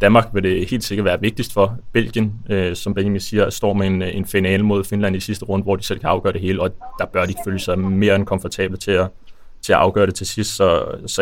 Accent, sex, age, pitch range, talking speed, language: native, male, 20-39, 95-105 Hz, 260 wpm, Danish